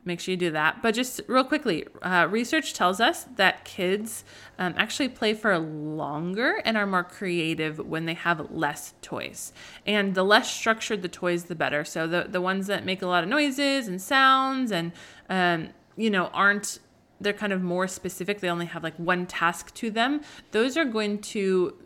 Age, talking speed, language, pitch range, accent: 20-39, 195 wpm, English, 170-225 Hz, American